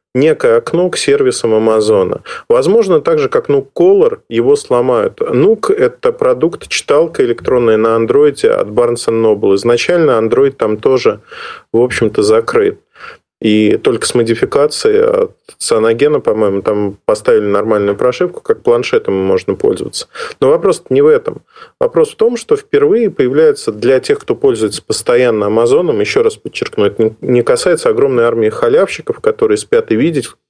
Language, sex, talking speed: Russian, male, 150 wpm